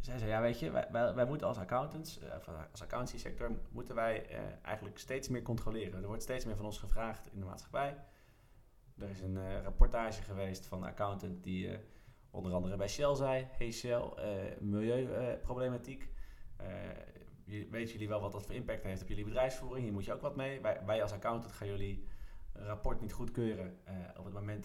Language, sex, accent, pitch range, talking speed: Dutch, male, Dutch, 100-125 Hz, 195 wpm